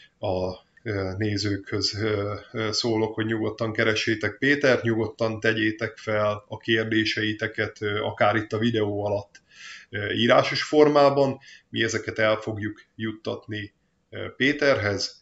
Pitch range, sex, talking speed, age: 105-120 Hz, male, 100 wpm, 20-39